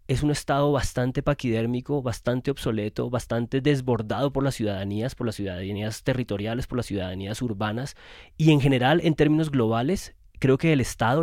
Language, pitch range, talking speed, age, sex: Spanish, 110-140 Hz, 160 wpm, 20-39, male